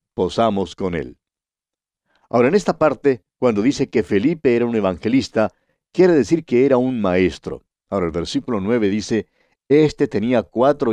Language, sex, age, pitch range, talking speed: Spanish, male, 50-69, 105-135 Hz, 155 wpm